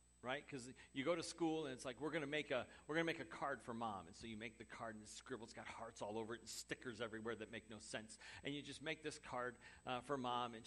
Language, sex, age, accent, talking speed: English, male, 50-69, American, 290 wpm